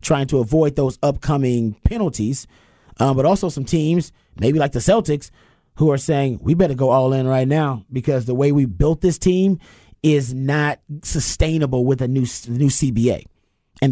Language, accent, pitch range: English, American, 120-155 Hz